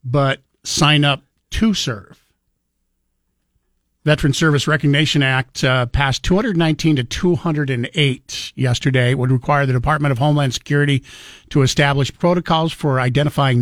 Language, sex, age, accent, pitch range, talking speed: English, male, 50-69, American, 130-160 Hz, 125 wpm